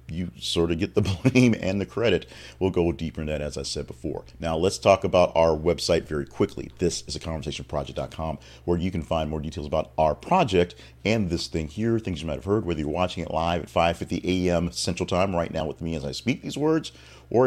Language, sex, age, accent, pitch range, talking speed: English, male, 40-59, American, 75-100 Hz, 230 wpm